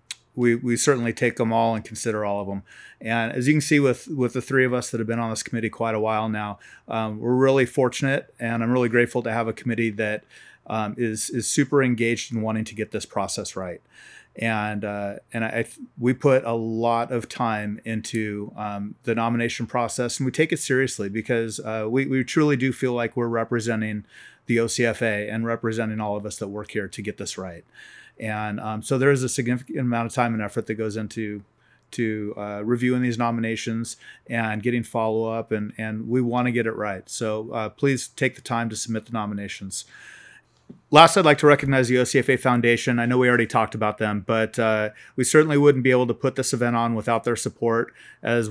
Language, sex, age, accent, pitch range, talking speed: English, male, 30-49, American, 110-125 Hz, 215 wpm